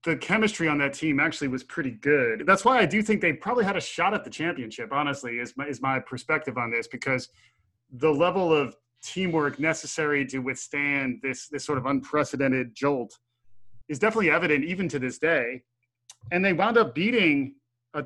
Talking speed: 185 wpm